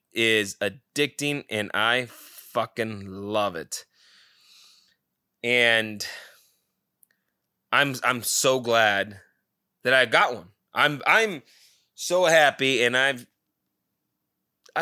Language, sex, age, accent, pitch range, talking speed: English, male, 20-39, American, 120-200 Hz, 90 wpm